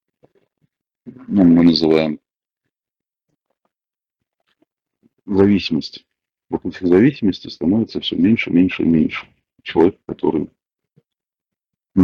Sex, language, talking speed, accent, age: male, Russian, 75 wpm, native, 50-69